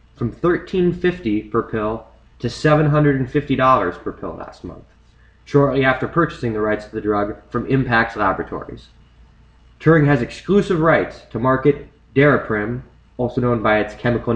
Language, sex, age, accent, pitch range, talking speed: English, male, 20-39, American, 115-145 Hz, 140 wpm